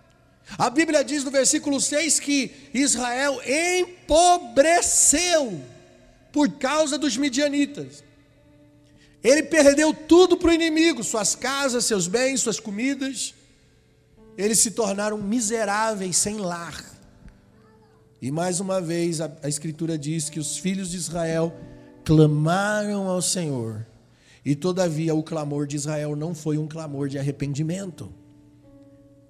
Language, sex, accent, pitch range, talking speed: Portuguese, male, Brazilian, 150-215 Hz, 120 wpm